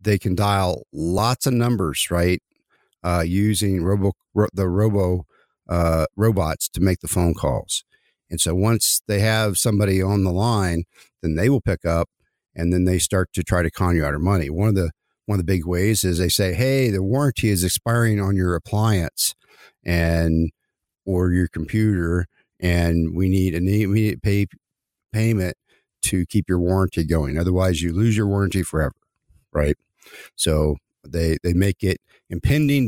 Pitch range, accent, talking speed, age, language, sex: 85-105 Hz, American, 170 wpm, 50-69, English, male